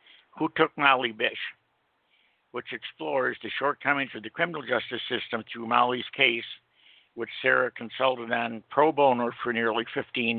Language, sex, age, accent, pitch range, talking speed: English, male, 60-79, American, 110-125 Hz, 145 wpm